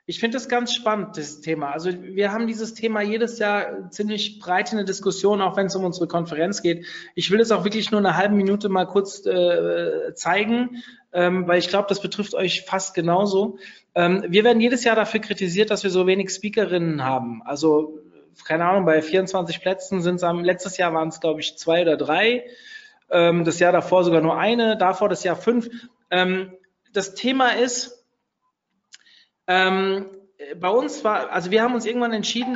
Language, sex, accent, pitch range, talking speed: German, male, German, 180-225 Hz, 190 wpm